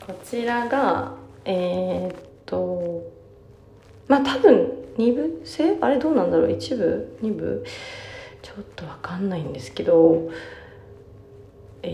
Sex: female